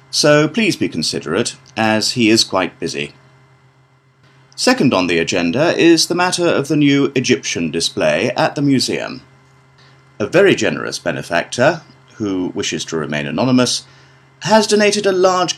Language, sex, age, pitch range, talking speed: Vietnamese, male, 30-49, 120-155 Hz, 145 wpm